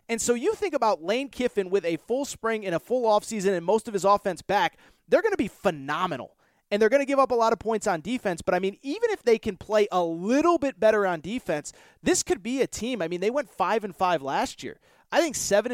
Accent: American